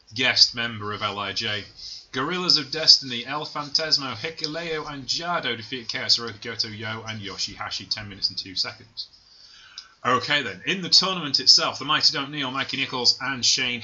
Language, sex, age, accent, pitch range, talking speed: English, male, 20-39, British, 110-140 Hz, 160 wpm